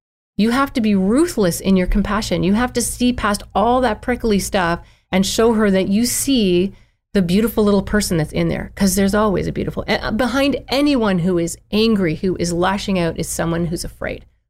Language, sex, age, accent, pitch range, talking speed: English, female, 30-49, American, 175-215 Hz, 200 wpm